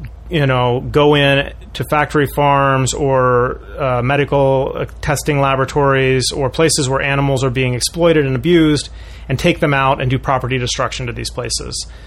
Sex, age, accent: male, 30-49, American